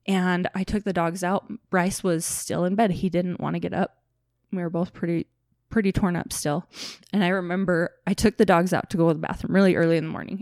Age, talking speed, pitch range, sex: 20-39, 250 wpm, 180-225 Hz, female